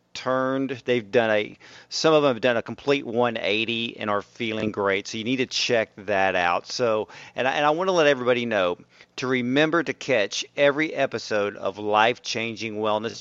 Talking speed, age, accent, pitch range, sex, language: 195 wpm, 40-59, American, 110-135 Hz, male, English